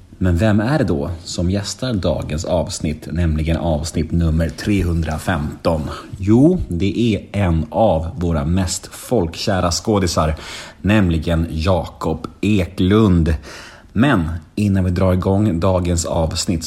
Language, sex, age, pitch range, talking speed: Swedish, male, 30-49, 85-110 Hz, 115 wpm